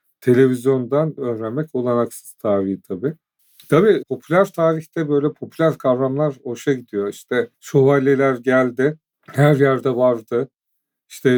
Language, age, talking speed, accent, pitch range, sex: Turkish, 40-59, 105 wpm, native, 120-140 Hz, male